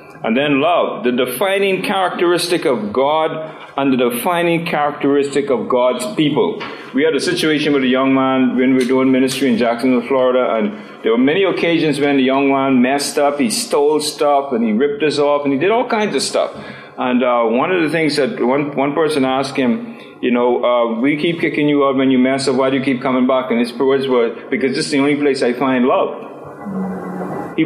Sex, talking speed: male, 220 wpm